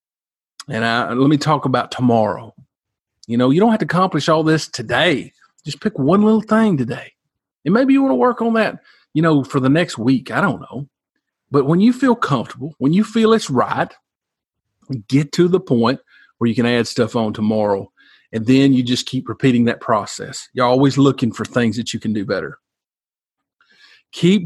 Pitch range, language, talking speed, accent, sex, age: 120-155 Hz, English, 195 wpm, American, male, 40-59